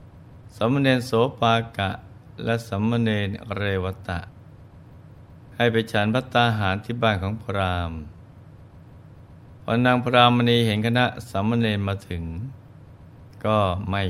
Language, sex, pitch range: Thai, male, 100-120 Hz